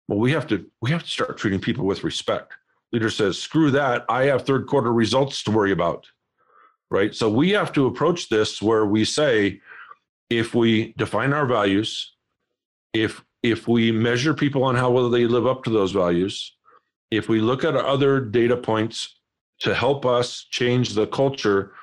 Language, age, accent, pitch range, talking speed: English, 50-69, American, 115-150 Hz, 180 wpm